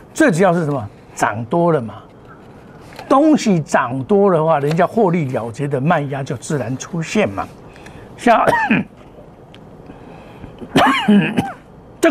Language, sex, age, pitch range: Chinese, male, 60-79, 145-215 Hz